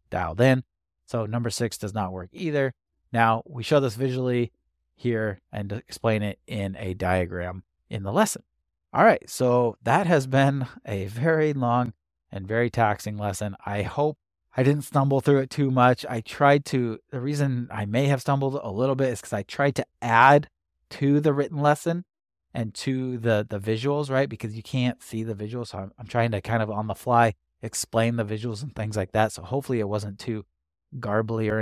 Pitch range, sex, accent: 105-135 Hz, male, American